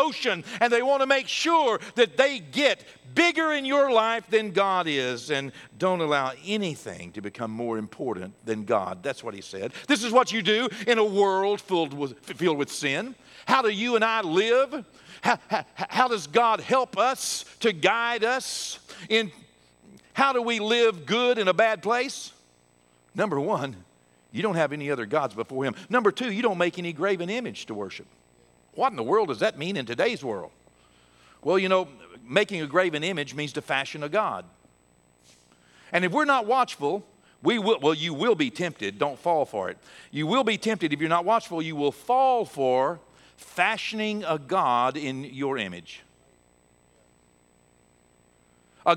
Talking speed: 180 wpm